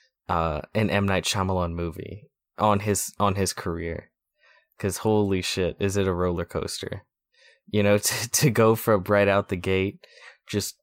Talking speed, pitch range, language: 165 wpm, 95-125 Hz, English